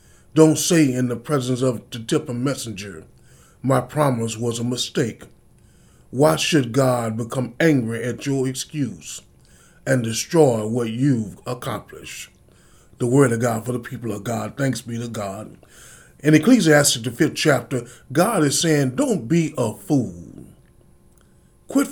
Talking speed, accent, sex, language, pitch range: 145 wpm, American, male, English, 115-145 Hz